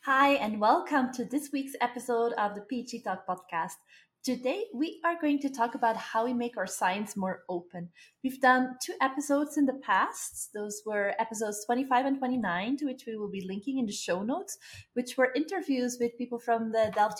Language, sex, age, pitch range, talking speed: English, female, 20-39, 200-265 Hz, 200 wpm